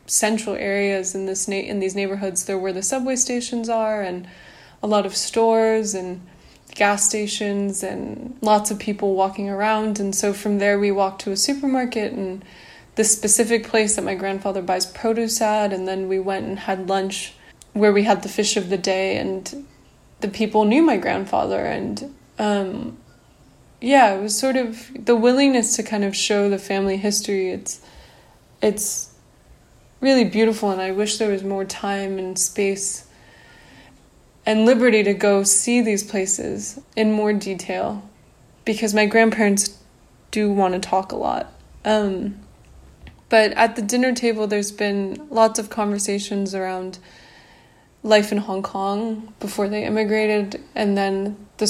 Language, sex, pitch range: English, female, 195-220 Hz